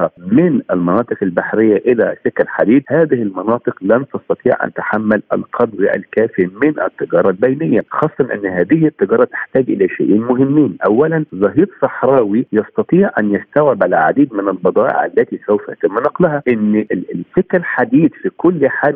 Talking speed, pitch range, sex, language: 140 wpm, 105-170 Hz, male, Arabic